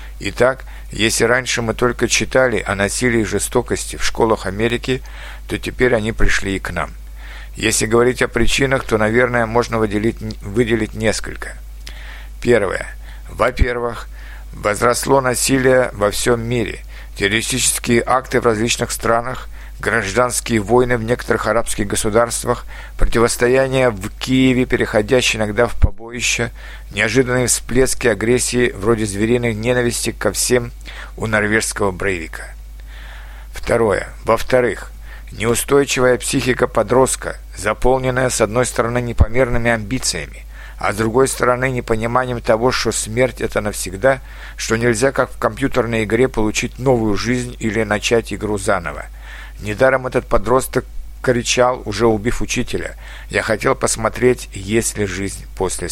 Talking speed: 120 wpm